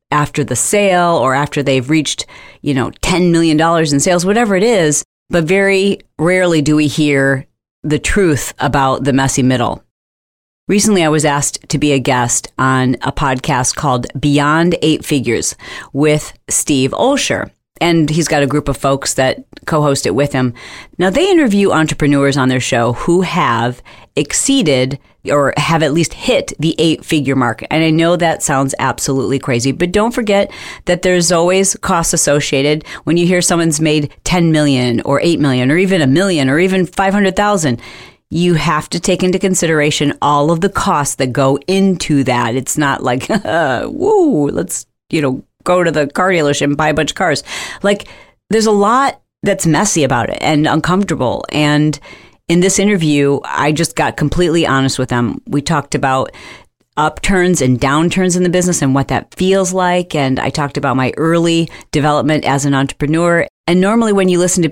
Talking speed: 180 wpm